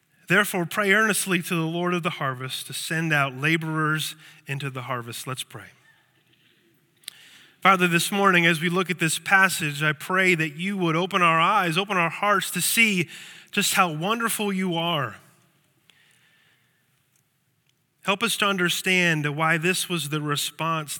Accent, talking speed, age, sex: American, 155 wpm, 30-49, male